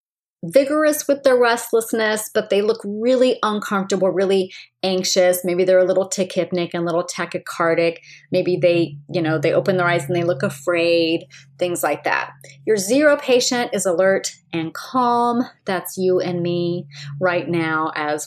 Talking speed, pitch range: 160 wpm, 170-220 Hz